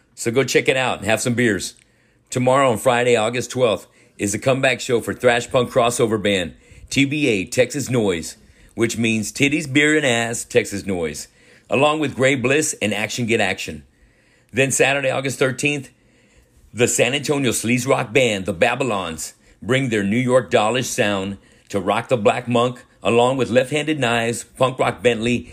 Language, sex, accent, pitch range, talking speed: English, male, American, 105-130 Hz, 170 wpm